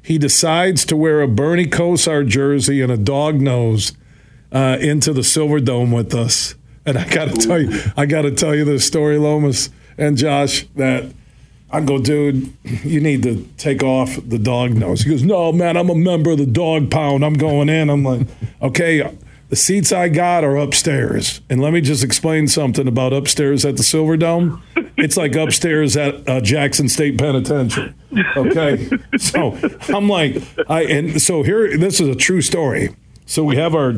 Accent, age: American, 50-69